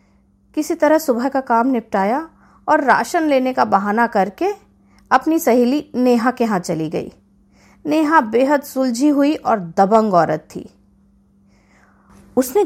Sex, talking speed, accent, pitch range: female, 135 wpm, native, 195-315 Hz